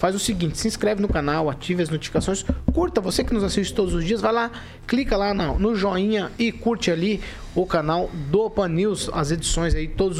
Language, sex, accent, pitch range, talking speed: Portuguese, male, Brazilian, 160-195 Hz, 220 wpm